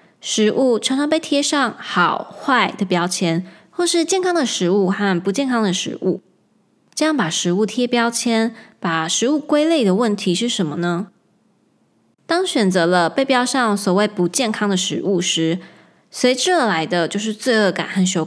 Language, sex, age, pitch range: Chinese, female, 20-39, 190-265 Hz